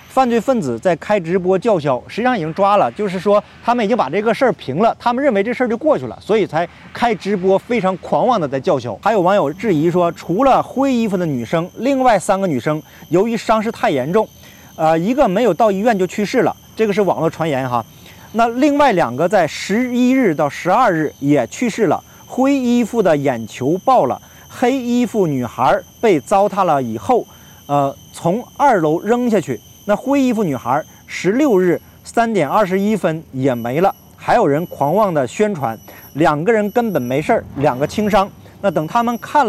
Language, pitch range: Chinese, 160-235 Hz